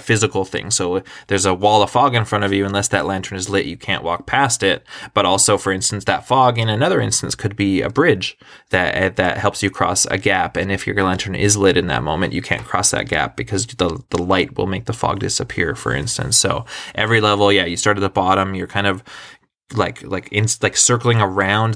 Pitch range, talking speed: 100-110 Hz, 235 wpm